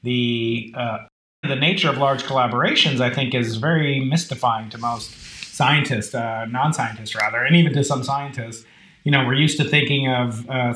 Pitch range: 125-160 Hz